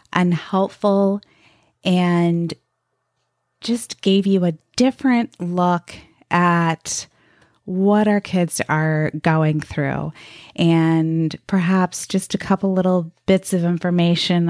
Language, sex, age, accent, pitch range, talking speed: English, female, 30-49, American, 160-200 Hz, 100 wpm